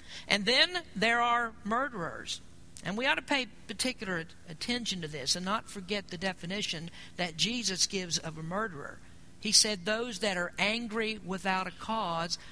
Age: 50-69